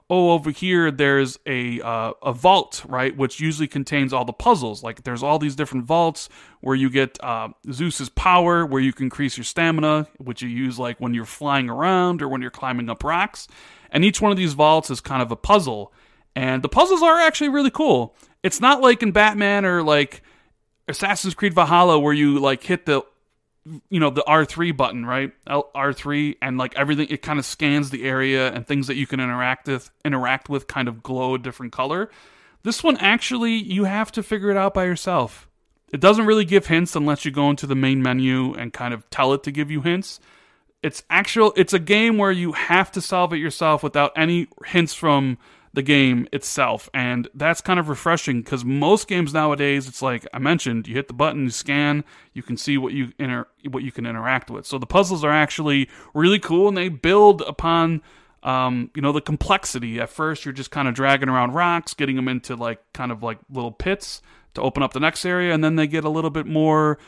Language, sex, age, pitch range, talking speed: English, male, 30-49, 130-170 Hz, 215 wpm